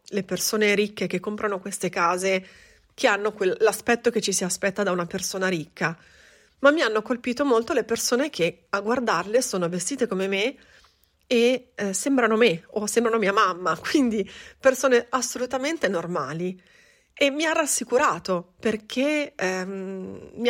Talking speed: 150 wpm